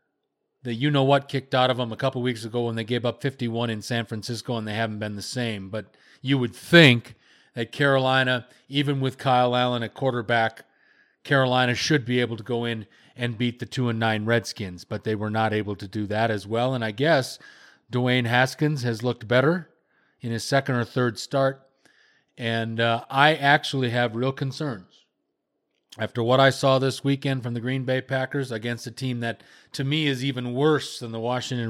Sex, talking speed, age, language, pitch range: male, 195 wpm, 40-59, English, 115-135 Hz